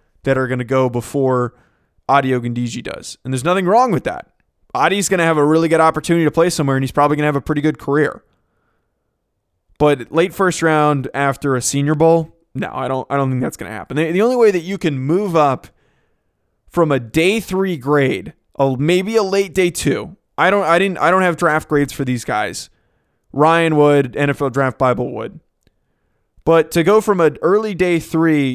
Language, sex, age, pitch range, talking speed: English, male, 20-39, 135-175 Hz, 200 wpm